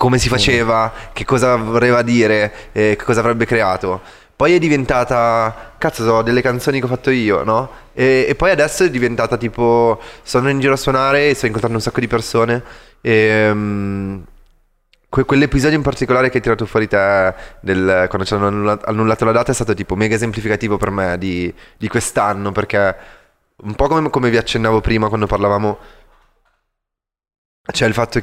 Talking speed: 180 wpm